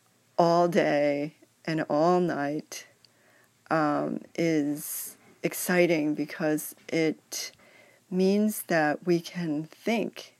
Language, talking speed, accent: English, 85 wpm, American